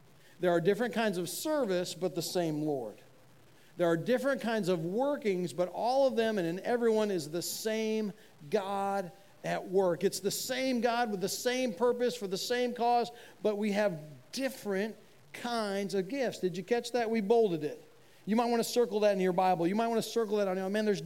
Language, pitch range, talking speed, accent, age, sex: English, 175-235 Hz, 210 wpm, American, 40-59, male